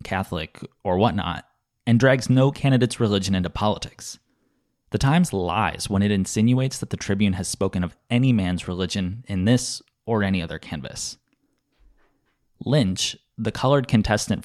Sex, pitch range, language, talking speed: male, 95-125 Hz, English, 145 wpm